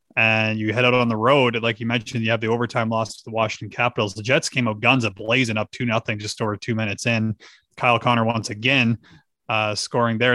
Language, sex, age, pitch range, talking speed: English, male, 30-49, 110-125 Hz, 230 wpm